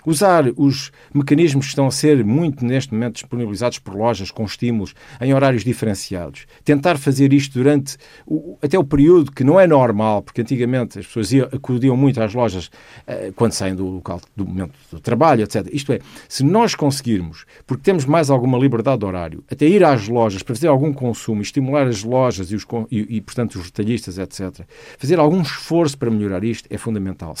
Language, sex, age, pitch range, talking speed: Portuguese, male, 50-69, 100-140 Hz, 190 wpm